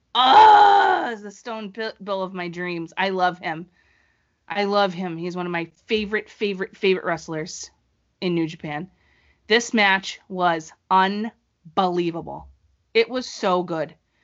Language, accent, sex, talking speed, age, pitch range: English, American, female, 140 wpm, 30-49, 165-215 Hz